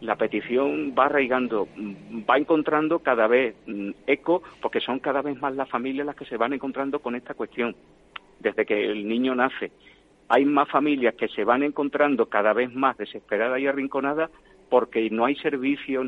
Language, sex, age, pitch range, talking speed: Spanish, male, 50-69, 120-140 Hz, 170 wpm